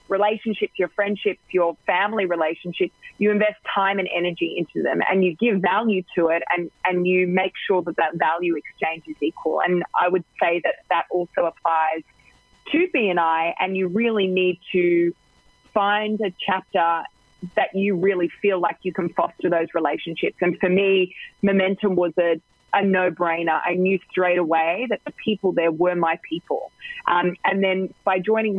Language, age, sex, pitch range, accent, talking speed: English, 20-39, female, 170-200 Hz, Australian, 170 wpm